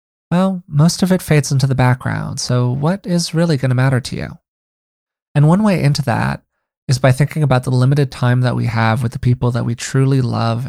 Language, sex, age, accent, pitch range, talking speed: English, male, 20-39, American, 115-135 Hz, 220 wpm